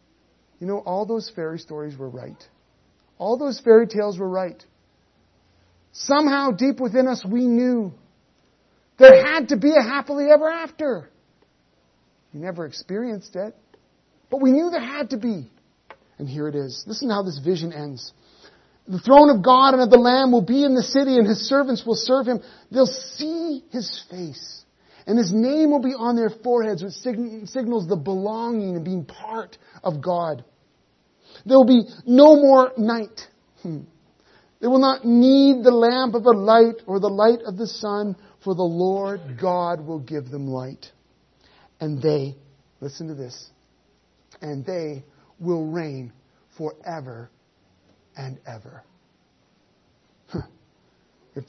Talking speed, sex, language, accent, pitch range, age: 155 wpm, male, English, American, 155-250 Hz, 40-59